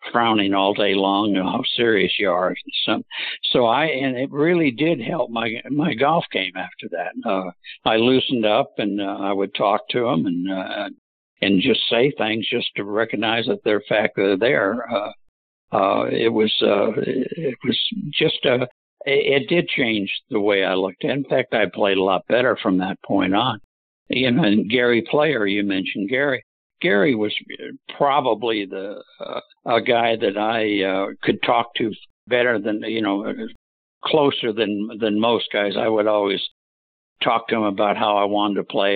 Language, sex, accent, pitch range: English, male, American, 100-115 Hz